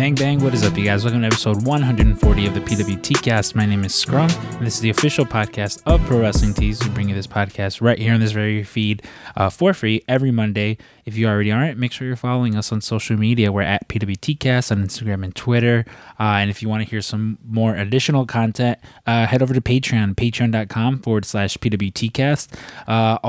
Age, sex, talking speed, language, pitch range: 20-39, male, 225 wpm, English, 105-125 Hz